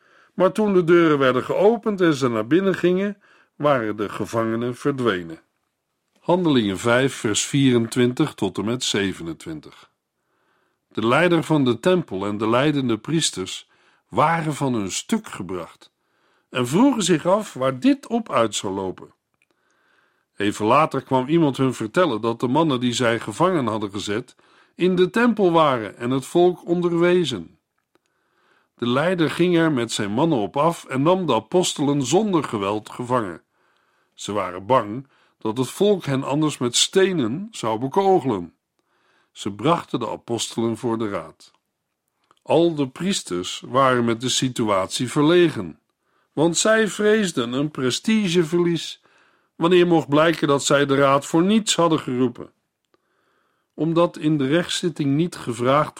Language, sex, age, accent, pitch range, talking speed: Dutch, male, 50-69, Dutch, 120-175 Hz, 145 wpm